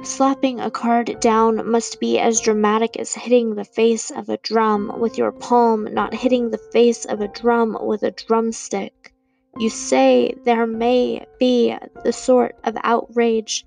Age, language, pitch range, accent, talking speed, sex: 20-39, English, 205-240 Hz, American, 160 wpm, female